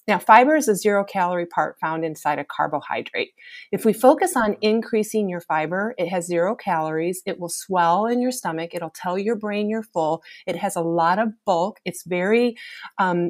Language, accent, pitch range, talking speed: English, American, 170-215 Hz, 190 wpm